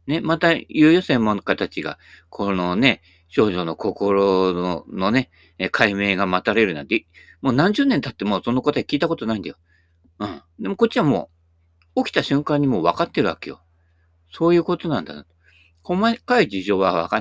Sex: male